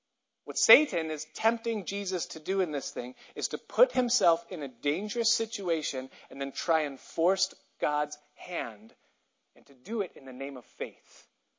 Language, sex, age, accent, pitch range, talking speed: English, male, 40-59, American, 150-215 Hz, 175 wpm